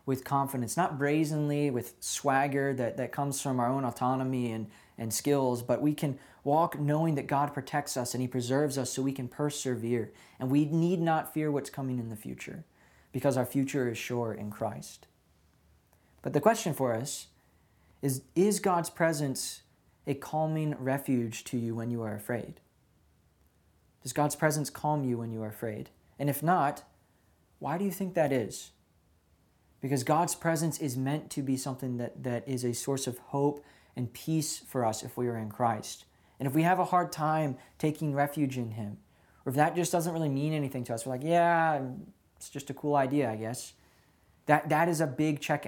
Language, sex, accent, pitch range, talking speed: English, male, American, 120-150 Hz, 195 wpm